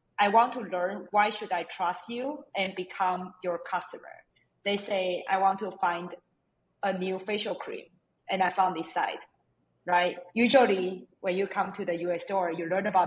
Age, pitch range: 20-39, 170-195 Hz